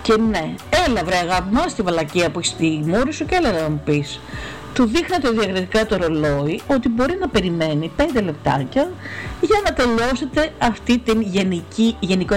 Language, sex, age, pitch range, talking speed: Greek, female, 50-69, 155-240 Hz, 165 wpm